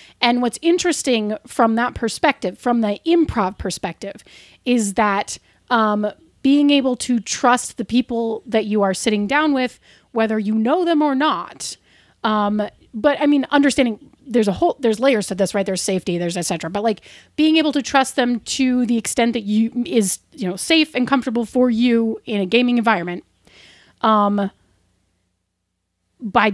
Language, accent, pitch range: English, American, 195-245 Hz